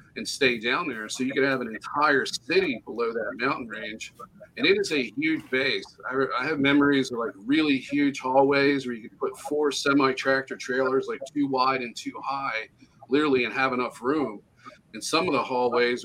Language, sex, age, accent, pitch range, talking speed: English, male, 50-69, American, 125-145 Hz, 195 wpm